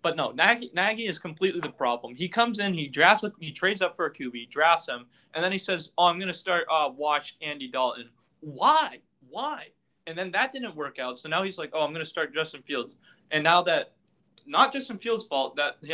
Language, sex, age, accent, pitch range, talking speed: English, male, 20-39, American, 140-190 Hz, 235 wpm